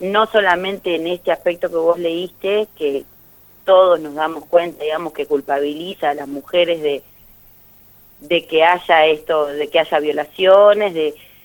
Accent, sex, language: Argentinian, female, Spanish